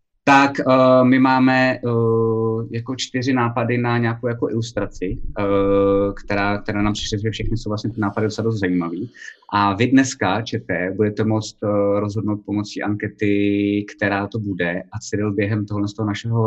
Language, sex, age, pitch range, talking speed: Czech, male, 20-39, 100-120 Hz, 160 wpm